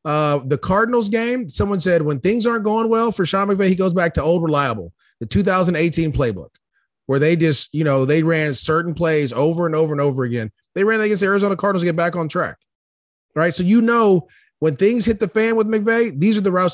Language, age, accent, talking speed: English, 30-49, American, 230 wpm